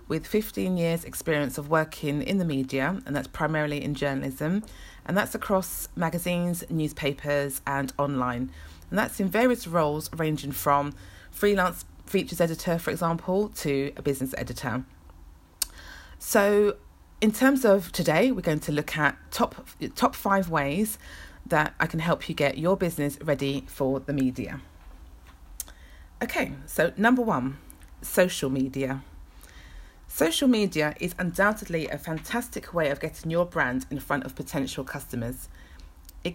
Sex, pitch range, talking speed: female, 130-175 Hz, 140 wpm